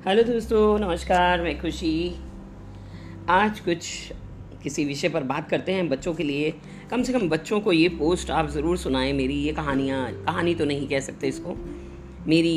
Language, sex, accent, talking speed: Hindi, female, native, 170 wpm